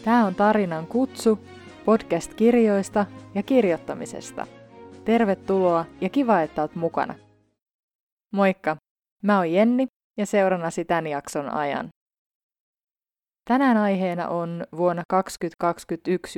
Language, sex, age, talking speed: Finnish, female, 20-39, 100 wpm